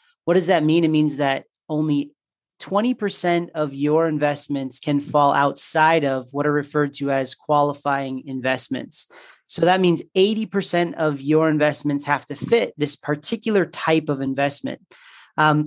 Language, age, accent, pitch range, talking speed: English, 30-49, American, 145-180 Hz, 150 wpm